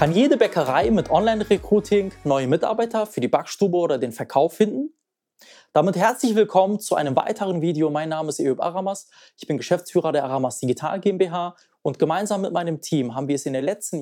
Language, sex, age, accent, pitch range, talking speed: German, male, 20-39, German, 150-195 Hz, 190 wpm